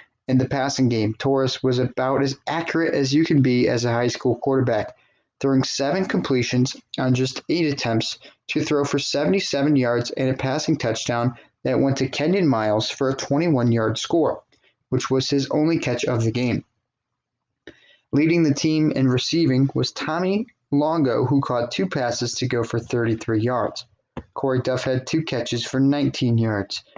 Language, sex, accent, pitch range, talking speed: English, male, American, 125-145 Hz, 170 wpm